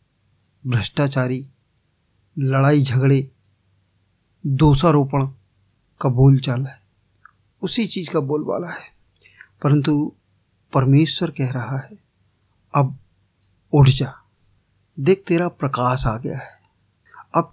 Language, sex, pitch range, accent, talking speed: Hindi, male, 105-150 Hz, native, 90 wpm